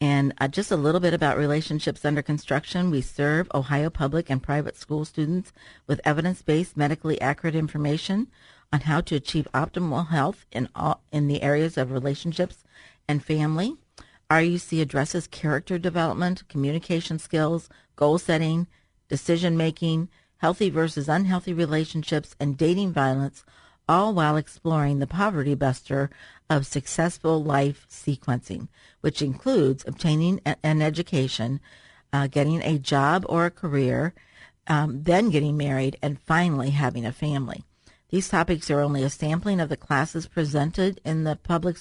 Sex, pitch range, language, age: female, 140-165 Hz, English, 50-69